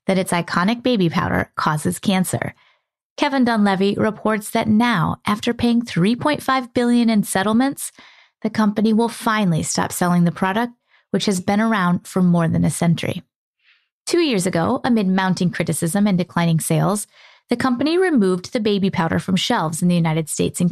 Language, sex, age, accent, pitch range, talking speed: English, female, 30-49, American, 180-240 Hz, 165 wpm